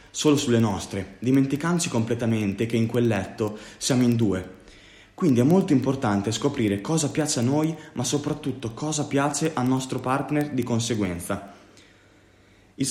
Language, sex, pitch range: Italian, male, 100-140 Hz